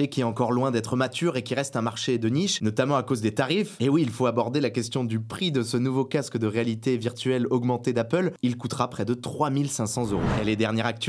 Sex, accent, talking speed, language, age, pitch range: male, French, 250 wpm, French, 20-39, 115-145 Hz